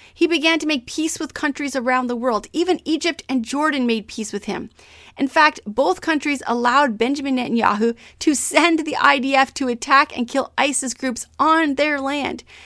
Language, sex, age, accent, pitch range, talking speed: English, female, 30-49, American, 245-310 Hz, 180 wpm